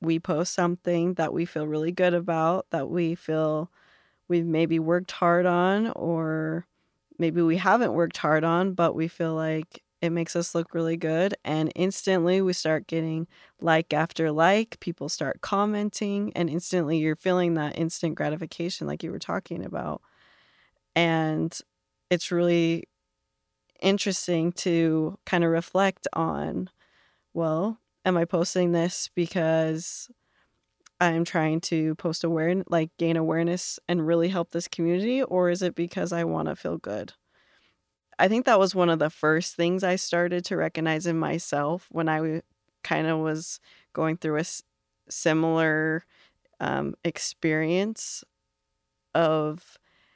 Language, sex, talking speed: English, female, 145 wpm